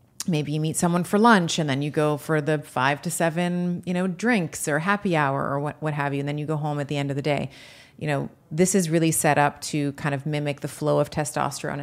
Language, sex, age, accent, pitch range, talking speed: English, female, 30-49, American, 145-175 Hz, 265 wpm